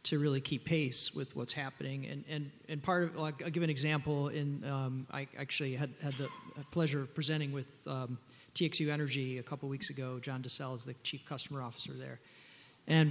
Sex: male